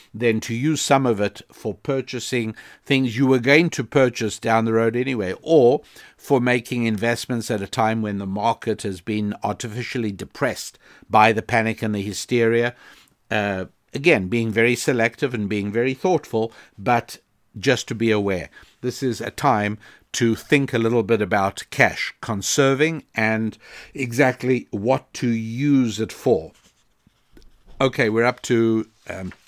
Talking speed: 155 wpm